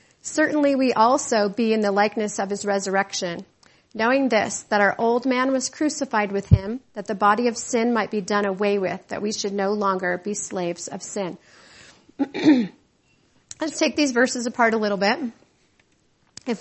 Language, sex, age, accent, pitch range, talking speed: English, female, 40-59, American, 210-255 Hz, 175 wpm